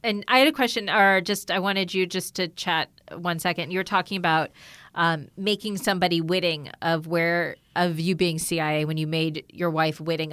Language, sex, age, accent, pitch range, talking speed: English, female, 30-49, American, 170-210 Hz, 200 wpm